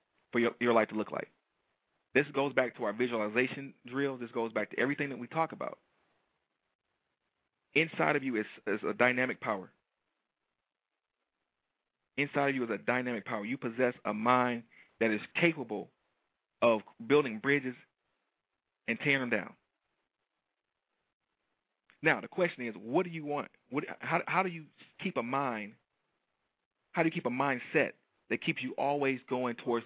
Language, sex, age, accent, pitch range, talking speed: English, male, 40-59, American, 110-140 Hz, 165 wpm